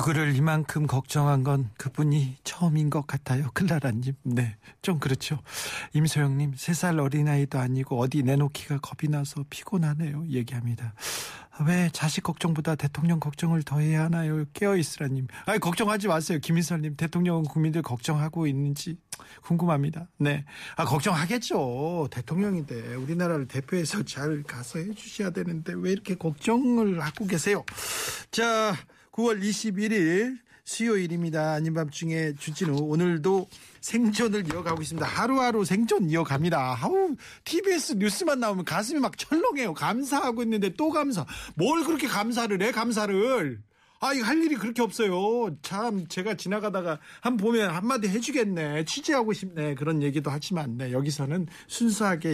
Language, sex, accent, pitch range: Korean, male, native, 145-205 Hz